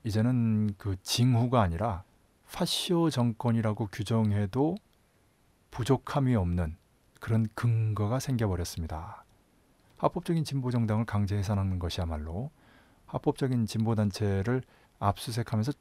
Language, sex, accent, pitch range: Korean, male, native, 100-130 Hz